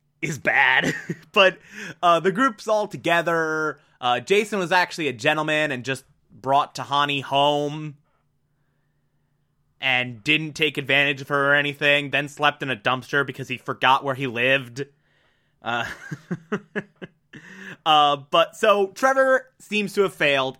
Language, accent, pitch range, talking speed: English, American, 135-170 Hz, 135 wpm